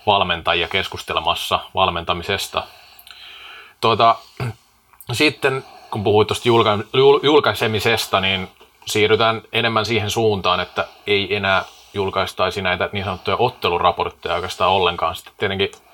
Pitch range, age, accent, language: 95-120 Hz, 30-49, native, Finnish